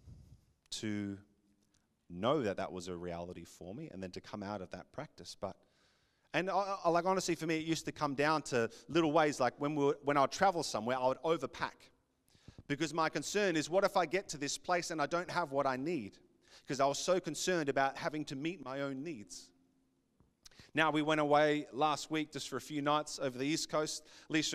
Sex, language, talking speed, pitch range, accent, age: male, English, 215 wpm, 130-170 Hz, Australian, 30-49